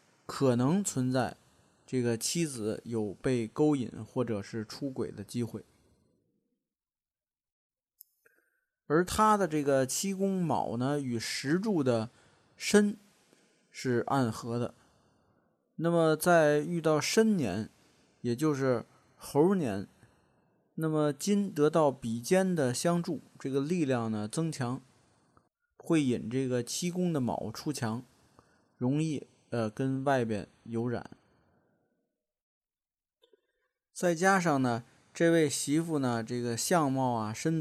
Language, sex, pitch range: Chinese, male, 120-165 Hz